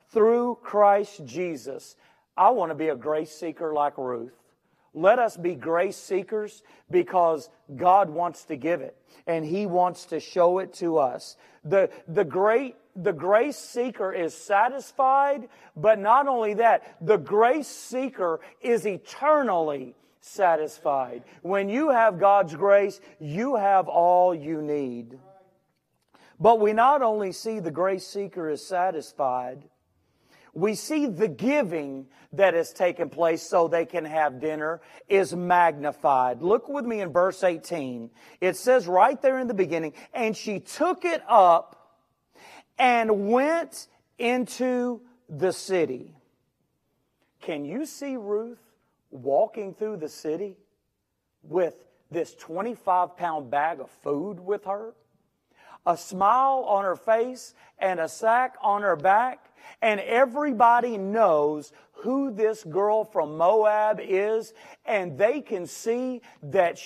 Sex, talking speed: male, 135 wpm